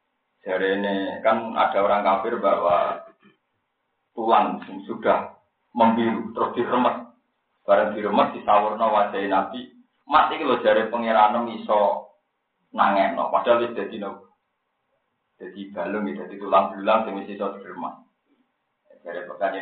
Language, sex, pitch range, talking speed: Indonesian, male, 115-165 Hz, 115 wpm